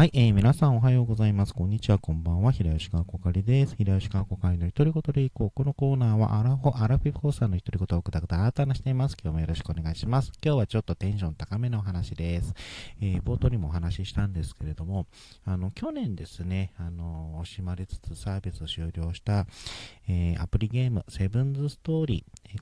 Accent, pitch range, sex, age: native, 85-115 Hz, male, 40-59